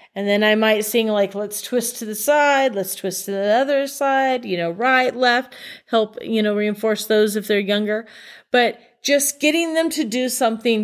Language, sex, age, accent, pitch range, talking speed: English, female, 30-49, American, 205-255 Hz, 200 wpm